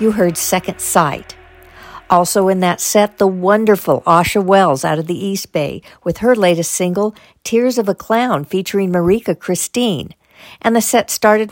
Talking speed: 165 wpm